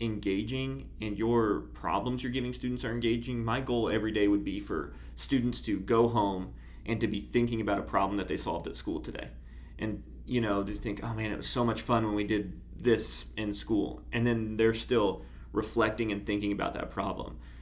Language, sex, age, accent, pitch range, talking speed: English, male, 30-49, American, 95-120 Hz, 210 wpm